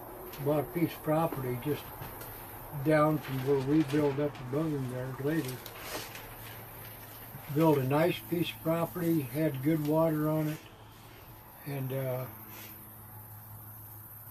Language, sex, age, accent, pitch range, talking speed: English, male, 60-79, American, 125-155 Hz, 120 wpm